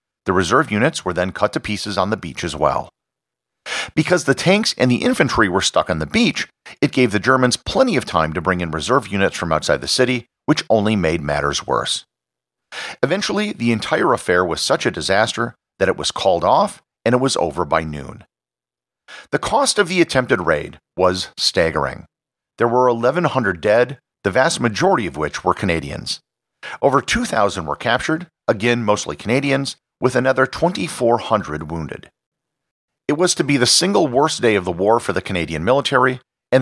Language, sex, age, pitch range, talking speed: English, male, 50-69, 90-130 Hz, 180 wpm